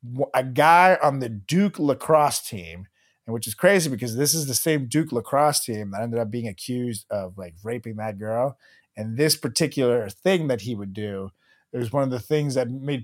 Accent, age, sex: American, 30-49, male